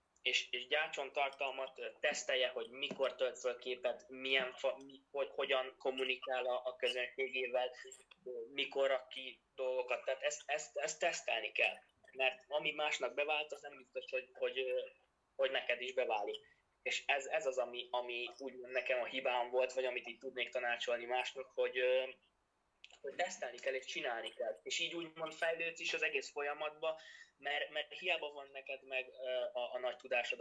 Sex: male